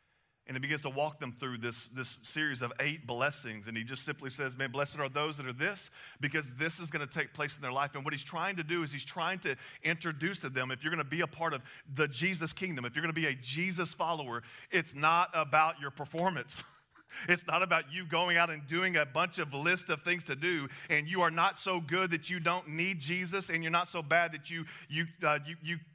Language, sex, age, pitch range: English, male, 40-59, 130-165 Hz